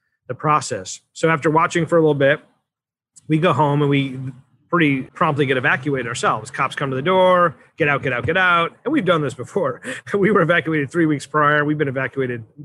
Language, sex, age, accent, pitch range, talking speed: English, male, 30-49, American, 130-155 Hz, 210 wpm